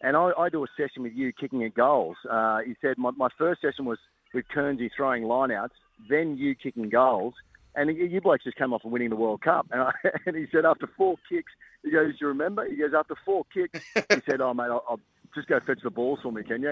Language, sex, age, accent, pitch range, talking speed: English, male, 40-59, Australian, 120-155 Hz, 255 wpm